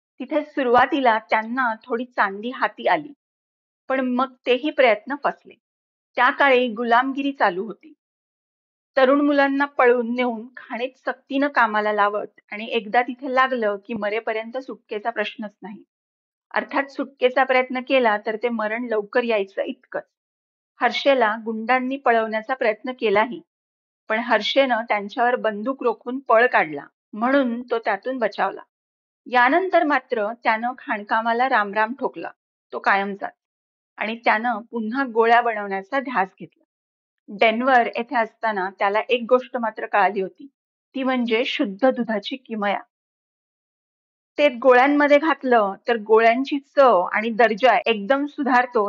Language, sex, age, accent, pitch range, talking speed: Marathi, female, 40-59, native, 220-265 Hz, 125 wpm